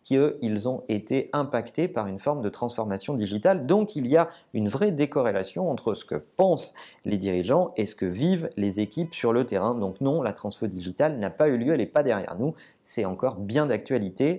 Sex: male